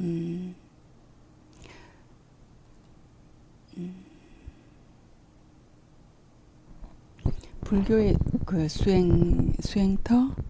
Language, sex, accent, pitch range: Korean, female, native, 160-190 Hz